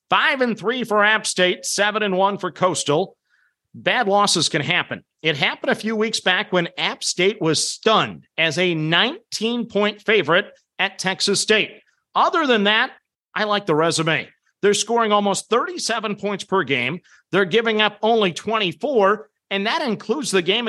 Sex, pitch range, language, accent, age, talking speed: male, 190-225 Hz, English, American, 40-59, 170 wpm